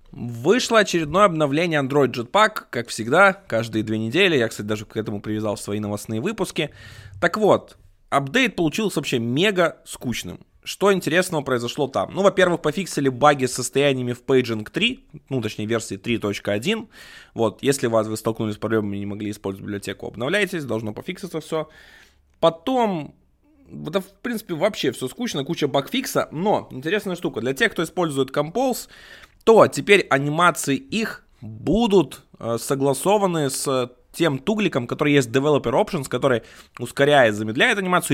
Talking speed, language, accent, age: 150 wpm, Russian, native, 20-39